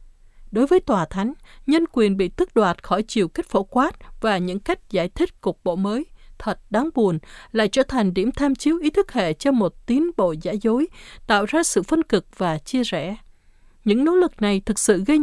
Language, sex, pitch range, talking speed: Vietnamese, female, 185-270 Hz, 215 wpm